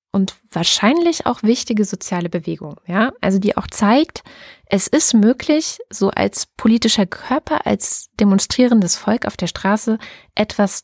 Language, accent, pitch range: German, German, 195-230 Hz